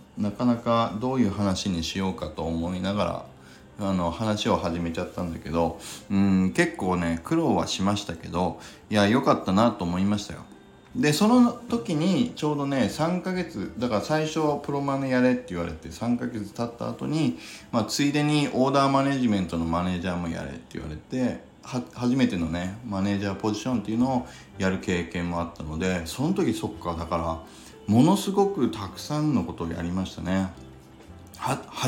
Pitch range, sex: 85-125 Hz, male